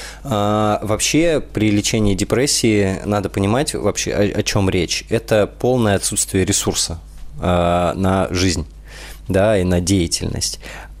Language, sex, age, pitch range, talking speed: Russian, male, 20-39, 90-105 Hz, 120 wpm